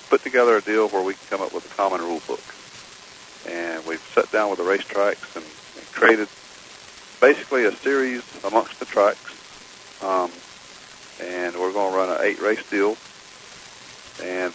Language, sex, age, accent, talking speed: English, male, 50-69, American, 165 wpm